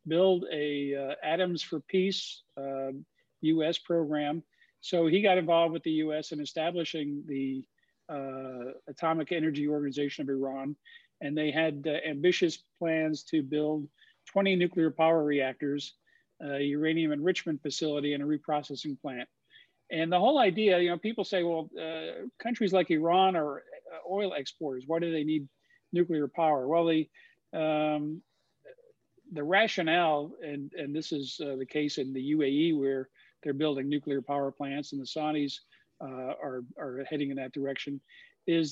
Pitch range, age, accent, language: 140-165 Hz, 50-69, American, English